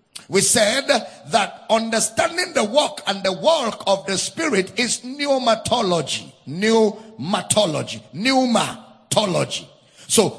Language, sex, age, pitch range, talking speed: English, male, 50-69, 195-260 Hz, 100 wpm